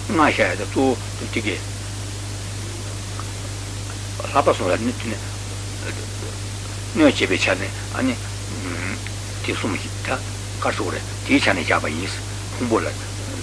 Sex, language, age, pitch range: male, Italian, 60-79, 100-110 Hz